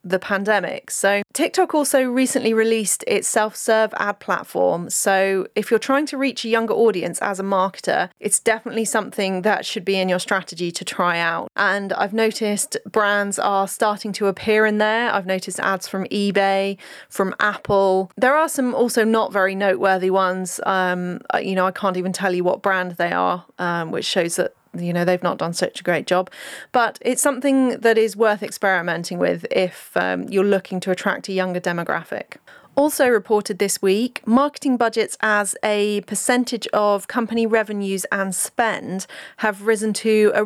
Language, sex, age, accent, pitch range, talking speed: English, female, 30-49, British, 190-230 Hz, 180 wpm